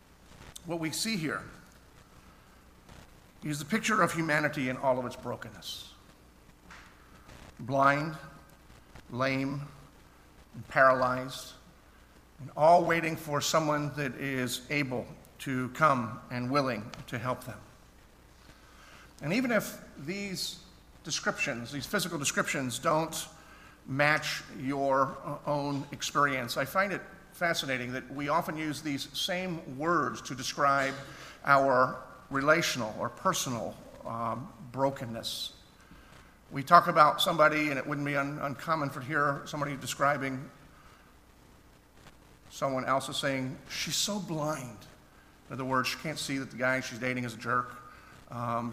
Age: 50-69